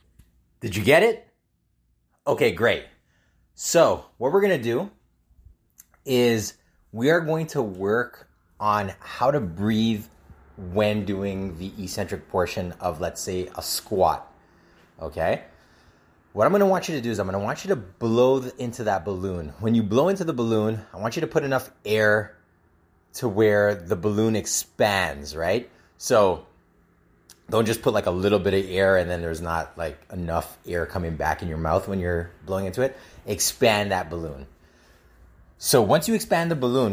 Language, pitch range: English, 85-115 Hz